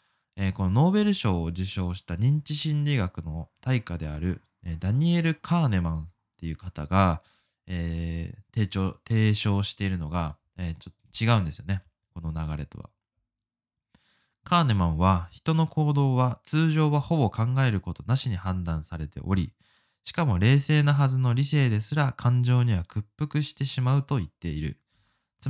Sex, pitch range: male, 90-135 Hz